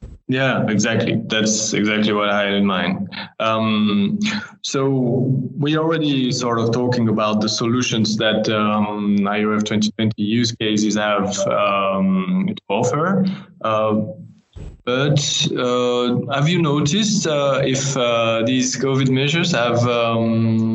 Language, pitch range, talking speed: English, 115-140 Hz, 125 wpm